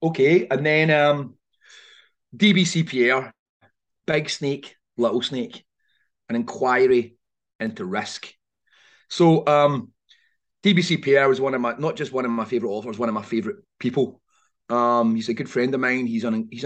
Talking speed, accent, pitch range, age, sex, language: 160 wpm, British, 120-175 Hz, 30-49, male, English